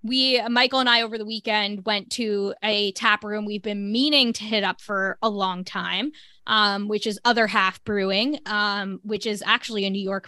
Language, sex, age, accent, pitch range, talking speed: English, female, 20-39, American, 200-230 Hz, 205 wpm